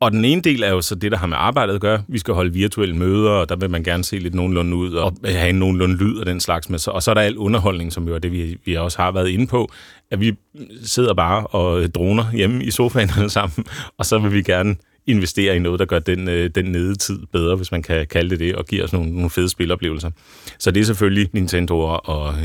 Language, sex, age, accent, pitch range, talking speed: Danish, male, 30-49, native, 90-115 Hz, 255 wpm